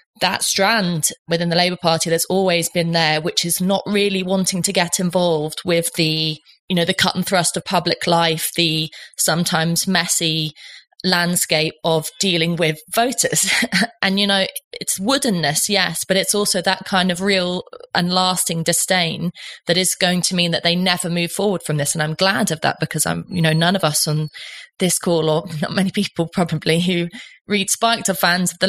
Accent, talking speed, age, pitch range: British, 190 wpm, 20-39, 165-195 Hz